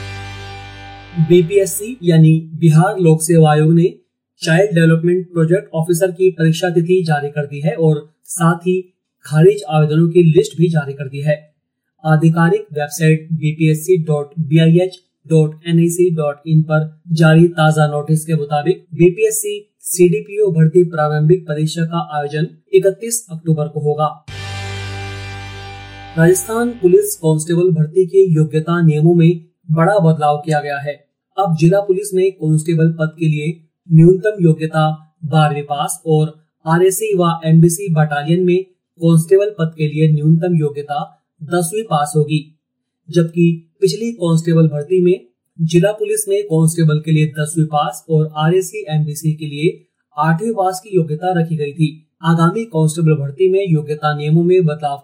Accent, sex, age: native, male, 30-49